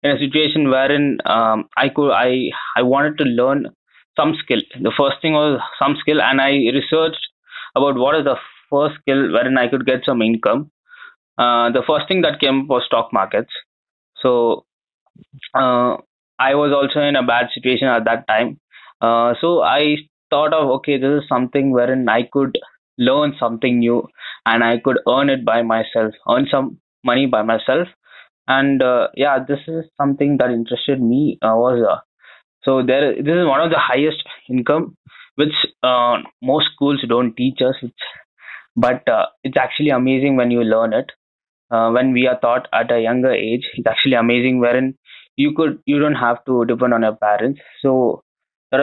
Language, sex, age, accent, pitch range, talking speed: English, male, 20-39, Indian, 120-140 Hz, 180 wpm